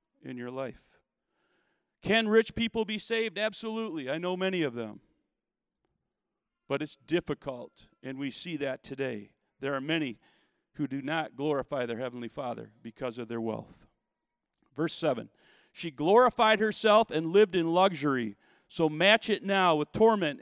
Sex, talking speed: male, 150 wpm